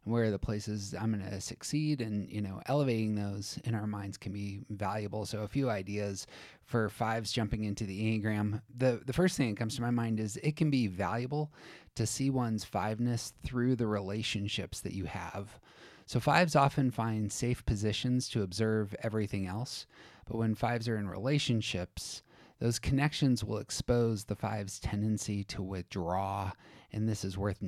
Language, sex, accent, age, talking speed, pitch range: English, male, American, 30-49, 180 wpm, 100-120 Hz